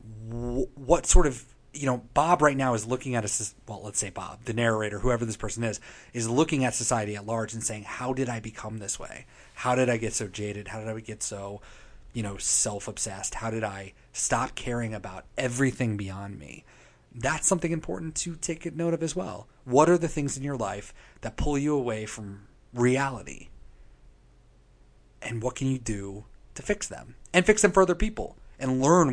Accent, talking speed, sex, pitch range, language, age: American, 200 wpm, male, 105-135 Hz, English, 30-49